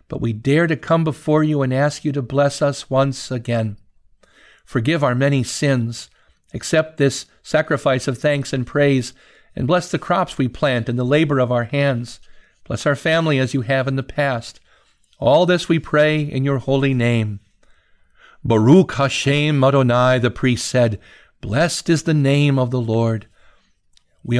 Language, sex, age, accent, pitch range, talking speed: English, male, 50-69, American, 125-160 Hz, 170 wpm